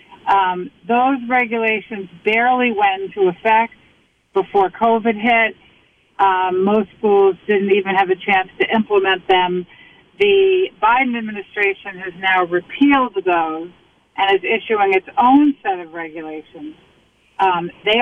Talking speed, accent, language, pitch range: 125 wpm, American, English, 190-265 Hz